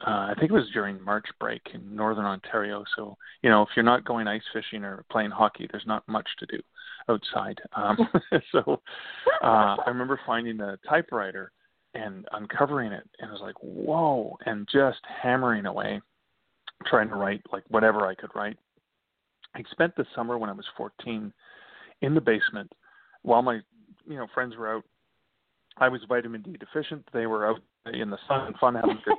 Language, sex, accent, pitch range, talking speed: English, male, American, 105-130 Hz, 185 wpm